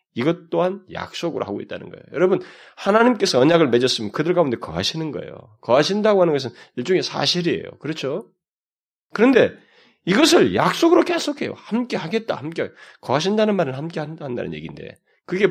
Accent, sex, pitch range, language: native, male, 150-215 Hz, Korean